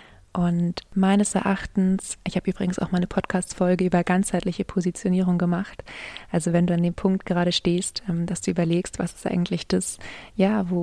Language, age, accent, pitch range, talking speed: German, 20-39, German, 175-195 Hz, 165 wpm